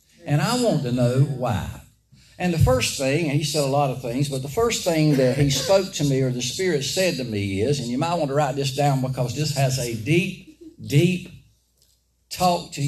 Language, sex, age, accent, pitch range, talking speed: English, male, 60-79, American, 115-155 Hz, 230 wpm